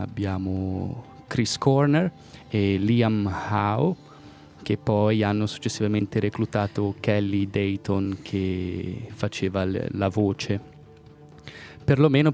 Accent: native